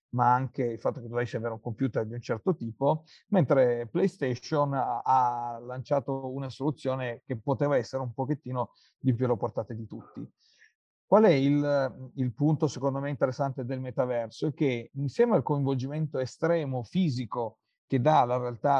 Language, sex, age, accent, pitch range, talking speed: Italian, male, 50-69, native, 125-145 Hz, 165 wpm